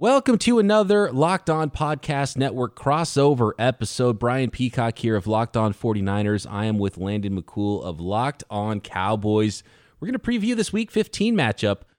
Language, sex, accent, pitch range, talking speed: English, male, American, 105-160 Hz, 165 wpm